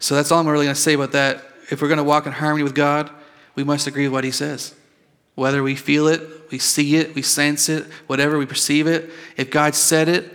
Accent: American